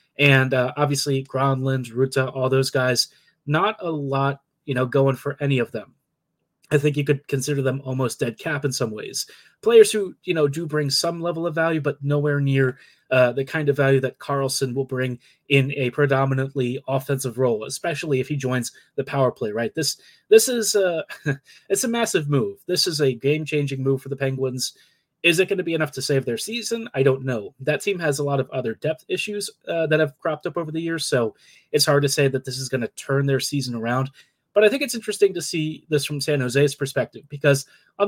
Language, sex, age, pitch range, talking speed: English, male, 30-49, 135-160 Hz, 220 wpm